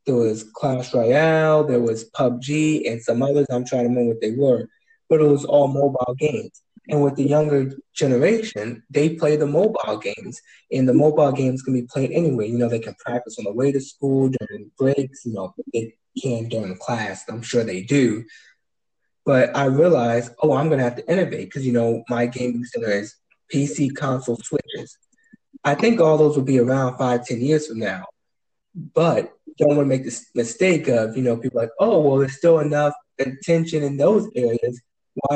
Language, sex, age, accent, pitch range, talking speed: English, male, 20-39, American, 120-145 Hz, 195 wpm